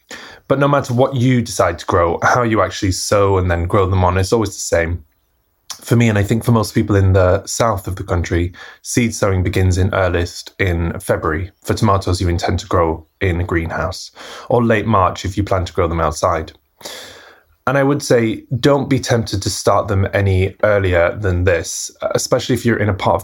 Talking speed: 210 wpm